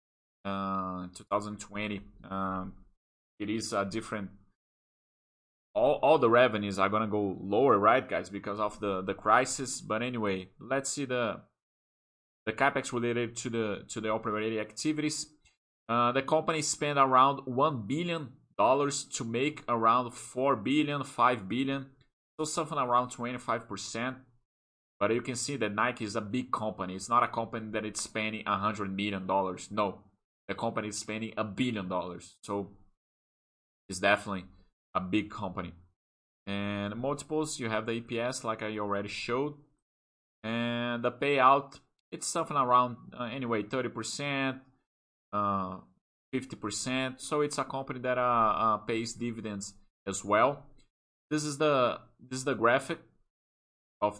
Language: Portuguese